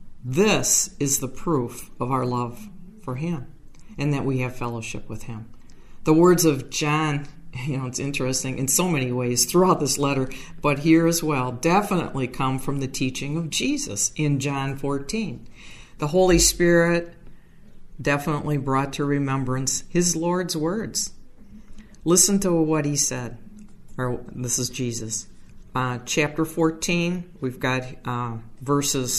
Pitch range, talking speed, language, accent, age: 130-170 Hz, 145 wpm, English, American, 50-69